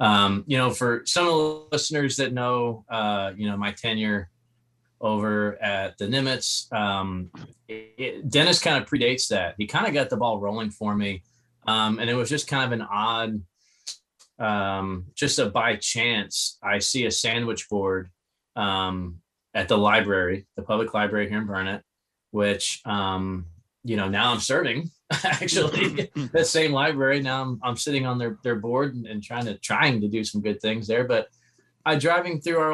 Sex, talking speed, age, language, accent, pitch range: male, 180 wpm, 20-39, English, American, 105-135 Hz